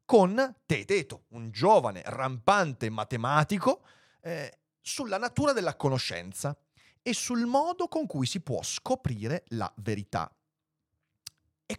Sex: male